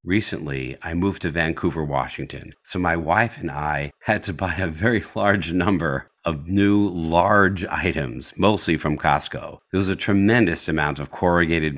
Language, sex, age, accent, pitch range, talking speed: English, male, 50-69, American, 80-100 Hz, 165 wpm